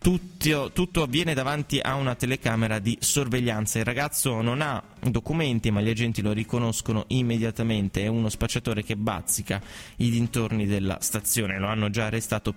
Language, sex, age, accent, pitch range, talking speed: Italian, male, 20-39, native, 105-125 Hz, 155 wpm